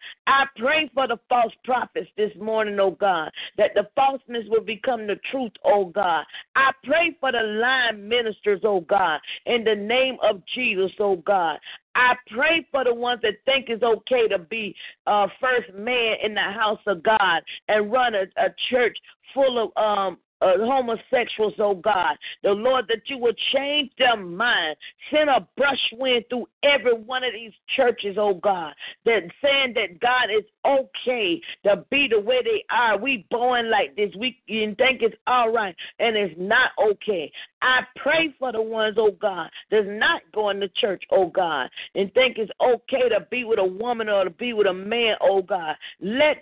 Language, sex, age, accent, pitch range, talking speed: English, female, 40-59, American, 205-265 Hz, 185 wpm